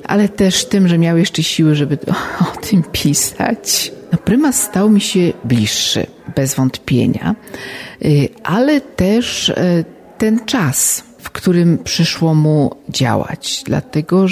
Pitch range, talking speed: 150-200 Hz, 120 wpm